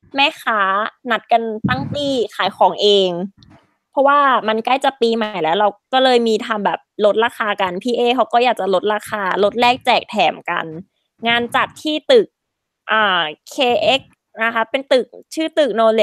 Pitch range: 205-255 Hz